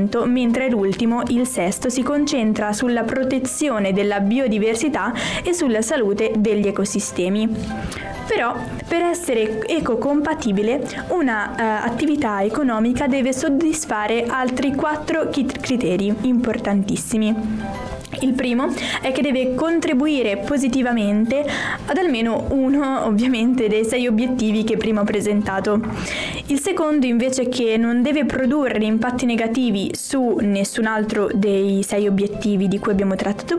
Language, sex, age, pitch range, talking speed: Italian, female, 10-29, 210-260 Hz, 120 wpm